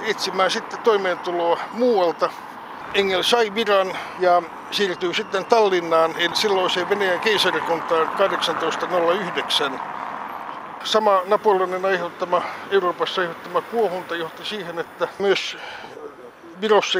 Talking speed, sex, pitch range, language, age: 100 wpm, male, 165-200 Hz, Finnish, 60-79